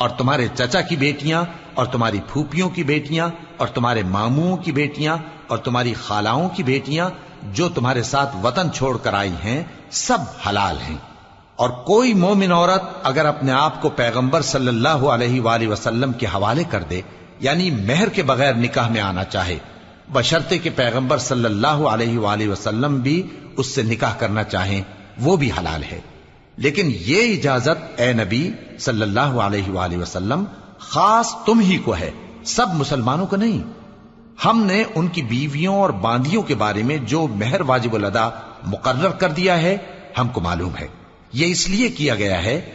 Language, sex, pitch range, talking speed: Arabic, male, 110-170 Hz, 175 wpm